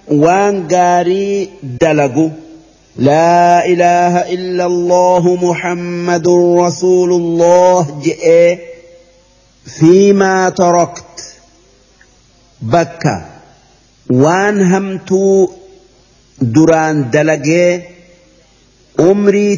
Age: 50-69